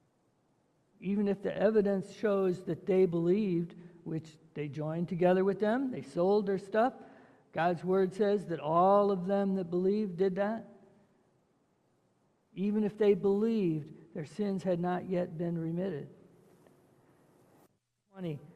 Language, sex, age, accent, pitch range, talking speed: English, male, 60-79, American, 165-200 Hz, 135 wpm